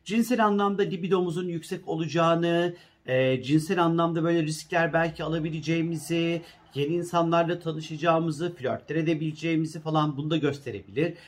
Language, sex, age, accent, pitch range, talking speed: Turkish, male, 40-59, native, 140-170 Hz, 110 wpm